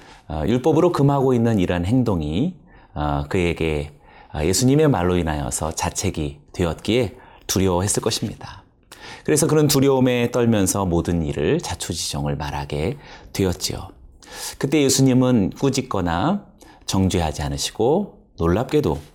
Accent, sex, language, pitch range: native, male, Korean, 80-135 Hz